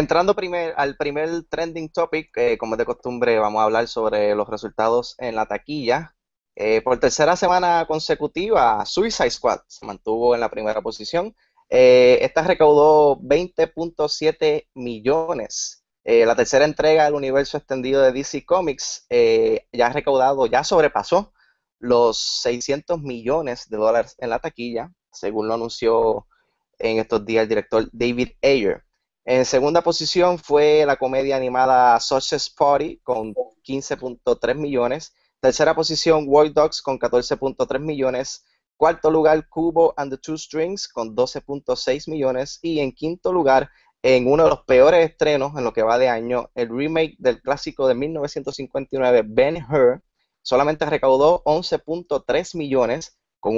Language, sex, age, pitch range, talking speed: Spanish, male, 20-39, 125-165 Hz, 145 wpm